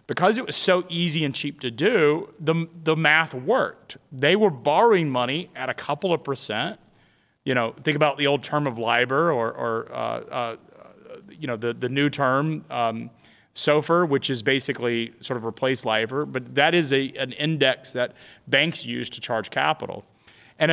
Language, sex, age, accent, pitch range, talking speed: English, male, 30-49, American, 115-150 Hz, 180 wpm